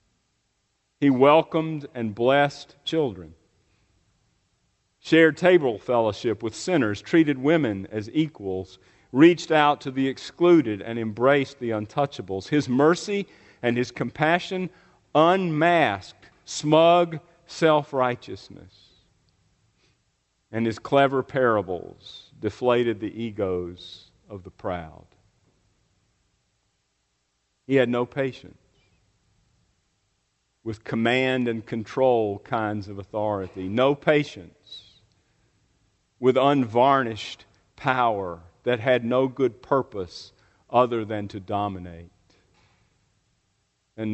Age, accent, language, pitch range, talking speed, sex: 50-69, American, English, 100-135 Hz, 90 wpm, male